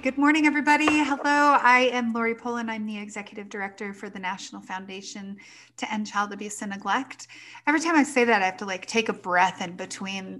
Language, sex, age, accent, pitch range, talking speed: English, female, 30-49, American, 205-245 Hz, 210 wpm